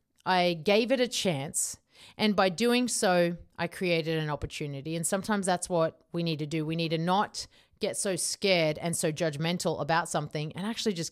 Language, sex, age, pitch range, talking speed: English, female, 30-49, 160-195 Hz, 195 wpm